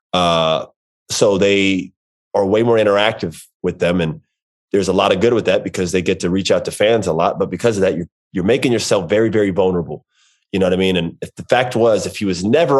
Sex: male